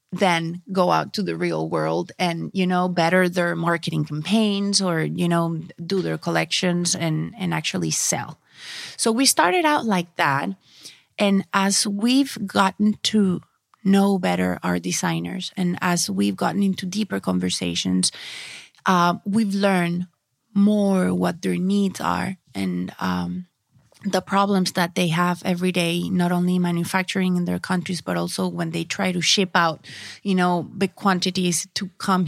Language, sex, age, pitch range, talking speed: English, female, 30-49, 170-195 Hz, 155 wpm